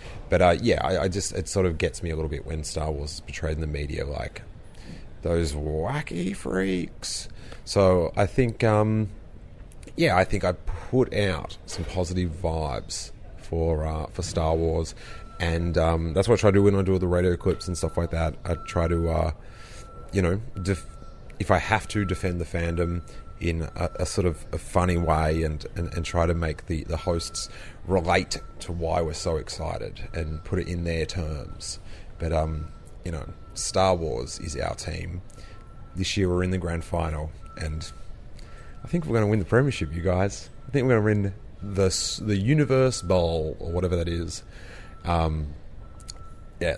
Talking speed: 190 wpm